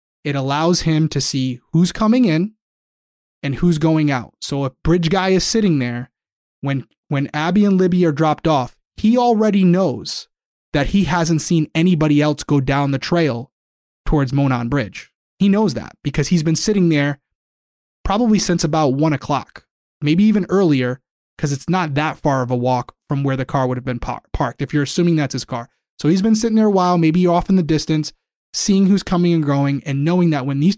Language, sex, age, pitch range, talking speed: English, male, 20-39, 140-175 Hz, 200 wpm